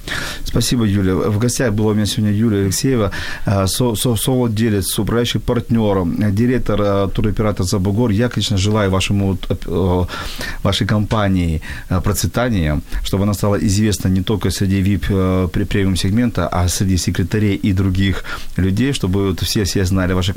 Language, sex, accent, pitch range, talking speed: Ukrainian, male, native, 95-115 Hz, 140 wpm